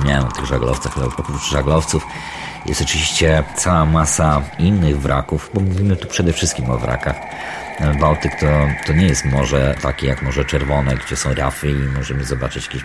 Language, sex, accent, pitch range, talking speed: Polish, male, native, 70-85 Hz, 175 wpm